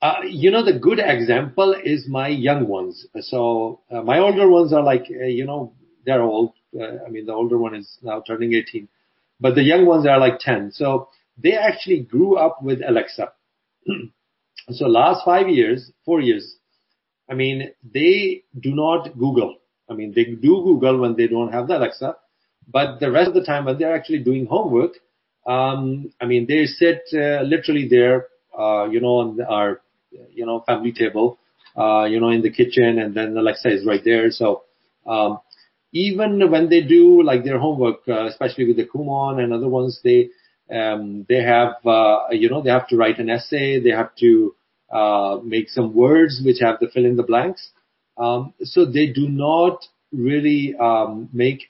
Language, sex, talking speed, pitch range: English, male, 185 wpm, 120-170 Hz